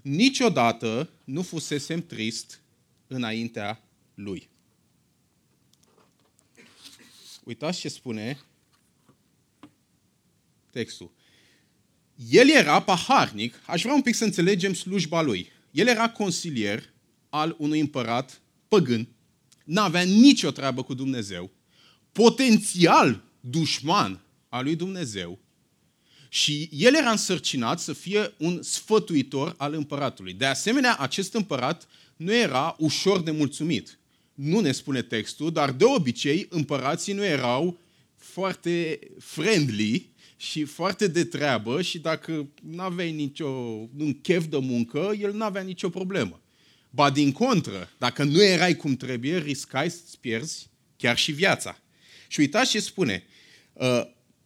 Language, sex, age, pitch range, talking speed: Romanian, male, 30-49, 130-180 Hz, 115 wpm